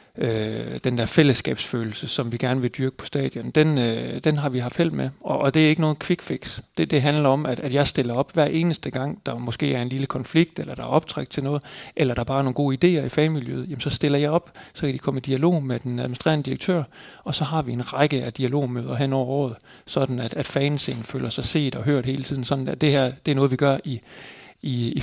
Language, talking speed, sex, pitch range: Danish, 255 wpm, male, 125-150 Hz